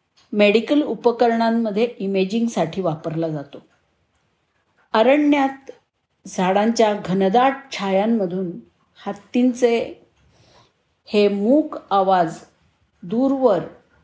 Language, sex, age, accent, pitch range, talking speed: Marathi, female, 50-69, native, 175-230 Hz, 60 wpm